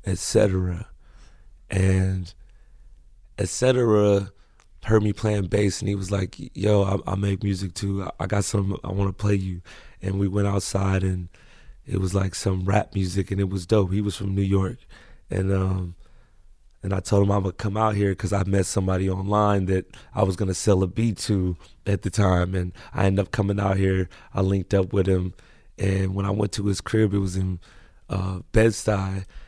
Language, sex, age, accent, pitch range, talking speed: English, male, 30-49, American, 95-105 Hz, 200 wpm